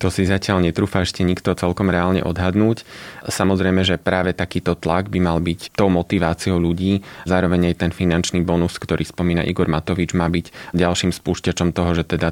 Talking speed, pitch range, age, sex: 175 wpm, 85-95 Hz, 20-39, male